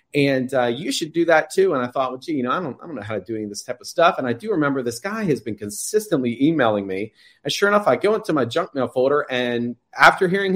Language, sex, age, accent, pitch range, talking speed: English, male, 30-49, American, 125-165 Hz, 290 wpm